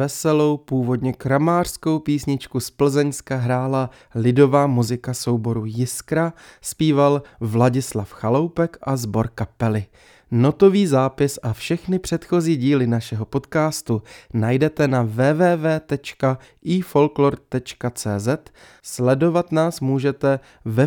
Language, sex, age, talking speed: Czech, male, 20-39, 90 wpm